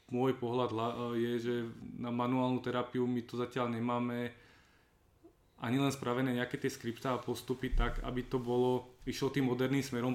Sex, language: male, Slovak